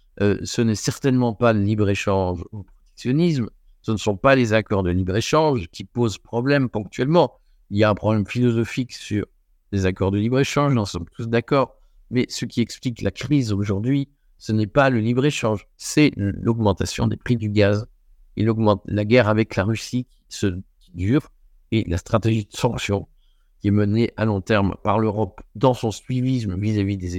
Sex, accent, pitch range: male, French, 95-125 Hz